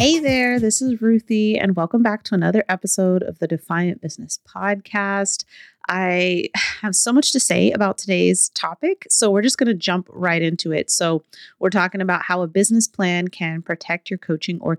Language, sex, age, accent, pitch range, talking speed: English, female, 30-49, American, 170-205 Hz, 190 wpm